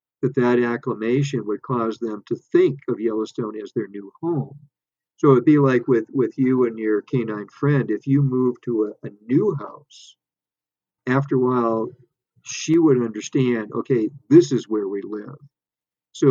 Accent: American